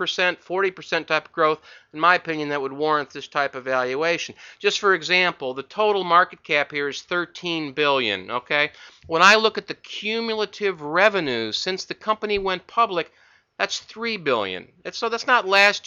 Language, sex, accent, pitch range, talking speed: English, male, American, 145-180 Hz, 180 wpm